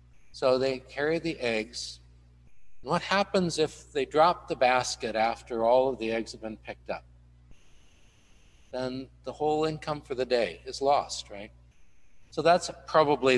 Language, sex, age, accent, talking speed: English, male, 60-79, American, 150 wpm